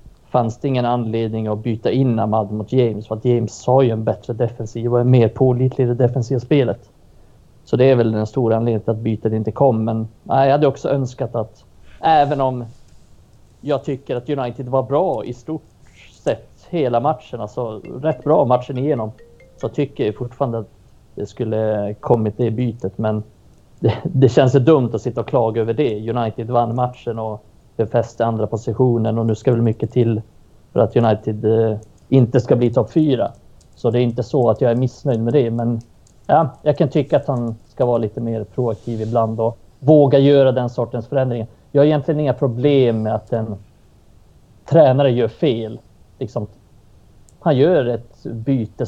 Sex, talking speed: male, 185 wpm